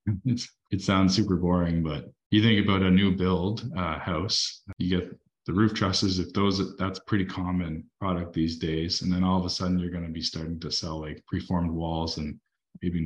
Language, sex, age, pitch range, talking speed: English, male, 20-39, 85-100 Hz, 205 wpm